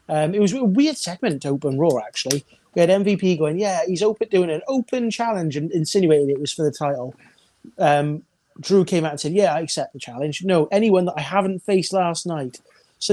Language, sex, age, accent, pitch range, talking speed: English, male, 30-49, British, 140-175 Hz, 220 wpm